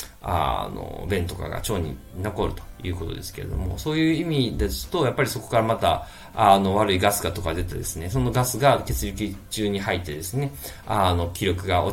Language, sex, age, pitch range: Japanese, male, 20-39, 90-125 Hz